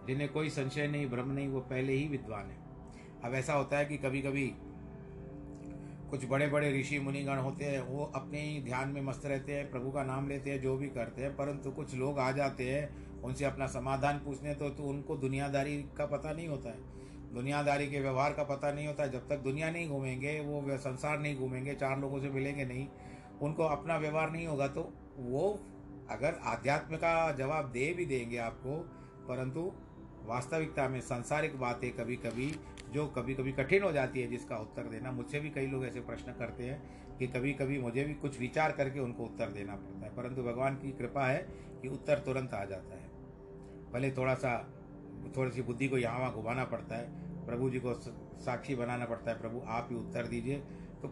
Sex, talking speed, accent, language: male, 200 wpm, native, Hindi